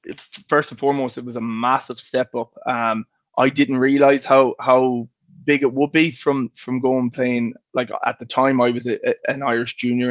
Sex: male